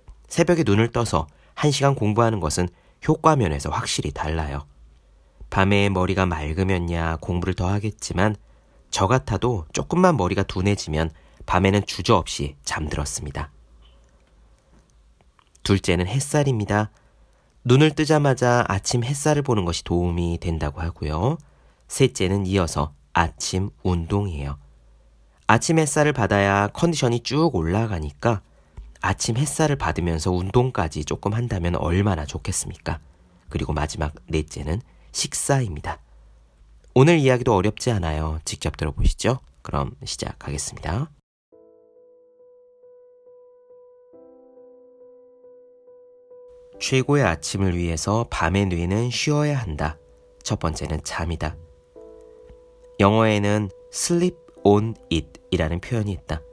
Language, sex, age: Korean, male, 40-59